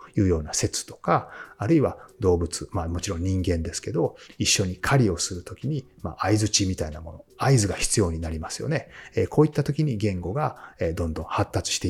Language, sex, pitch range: Japanese, male, 90-125 Hz